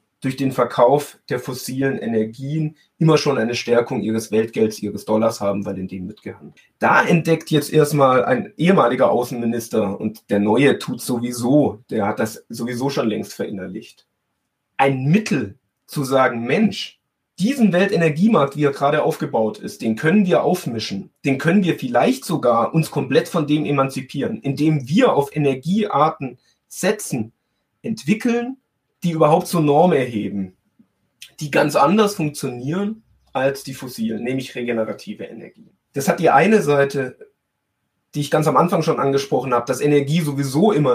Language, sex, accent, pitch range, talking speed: German, male, German, 120-155 Hz, 150 wpm